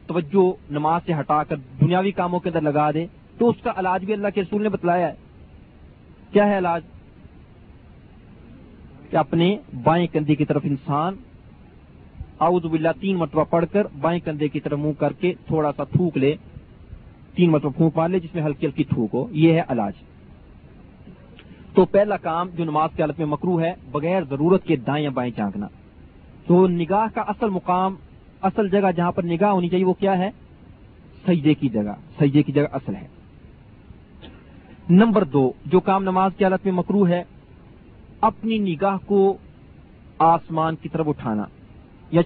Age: 40-59